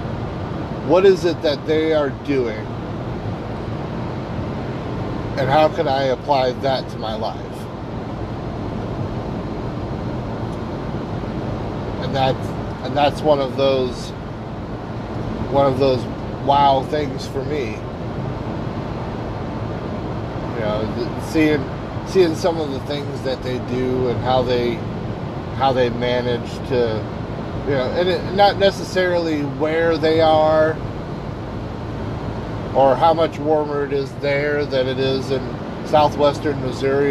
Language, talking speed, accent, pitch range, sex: English, 110 wpm, American, 120-150 Hz, male